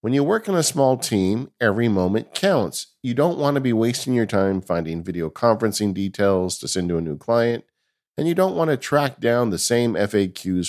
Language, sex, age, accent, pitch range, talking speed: English, male, 50-69, American, 90-125 Hz, 215 wpm